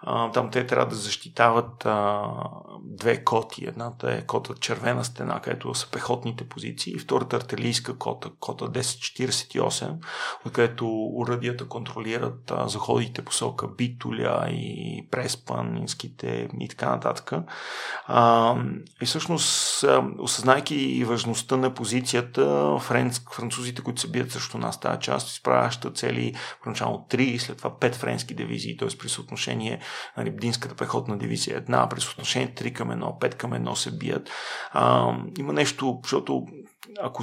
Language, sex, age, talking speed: Bulgarian, male, 40-59, 135 wpm